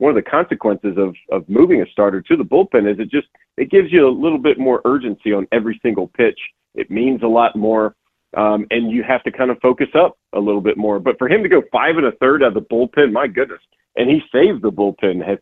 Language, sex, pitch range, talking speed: English, male, 110-135 Hz, 255 wpm